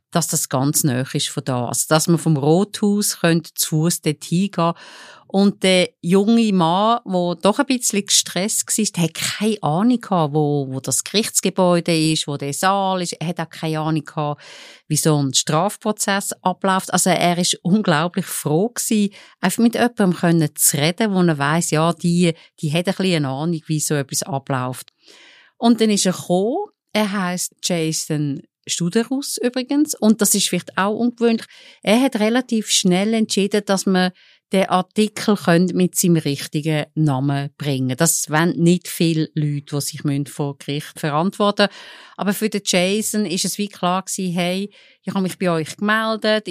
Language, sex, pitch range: German, female, 160-205 Hz